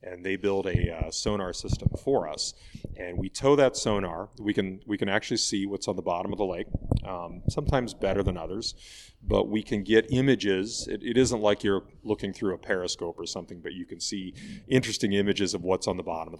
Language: English